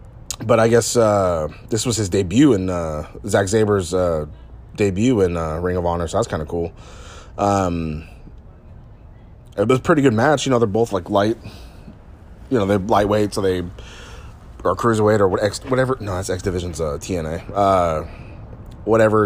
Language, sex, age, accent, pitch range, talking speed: English, male, 20-39, American, 90-110 Hz, 180 wpm